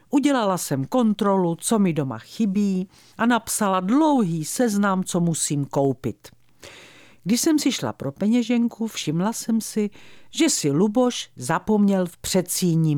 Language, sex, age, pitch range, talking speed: Czech, female, 50-69, 155-225 Hz, 135 wpm